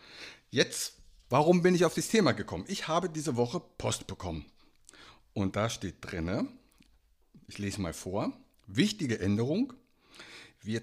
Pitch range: 105-155 Hz